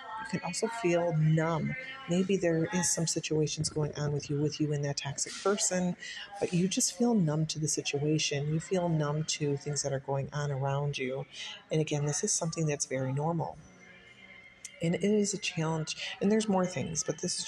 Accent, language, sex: American, English, female